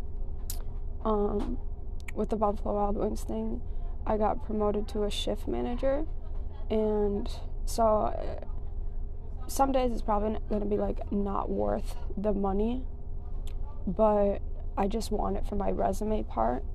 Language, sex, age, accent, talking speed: English, female, 20-39, American, 135 wpm